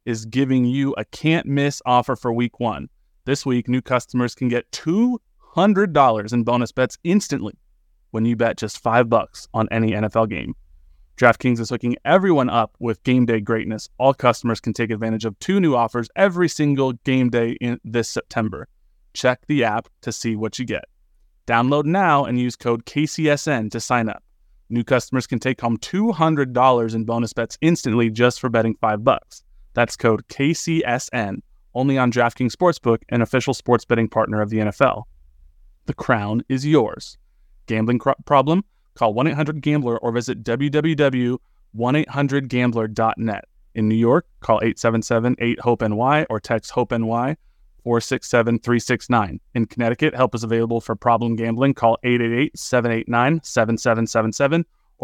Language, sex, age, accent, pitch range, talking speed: English, male, 20-39, American, 115-140 Hz, 155 wpm